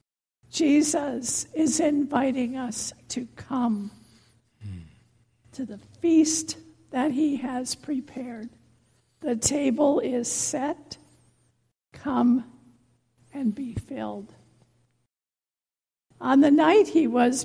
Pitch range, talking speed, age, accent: 205-285 Hz, 90 wpm, 60-79, American